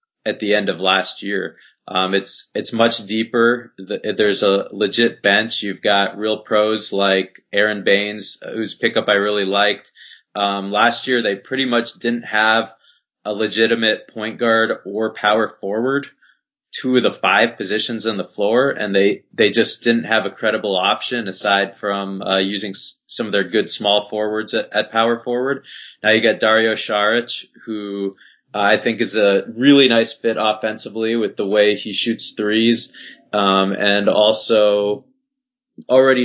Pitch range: 100-115 Hz